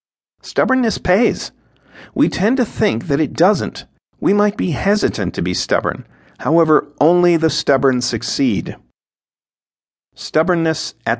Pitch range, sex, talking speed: 110-160 Hz, male, 125 wpm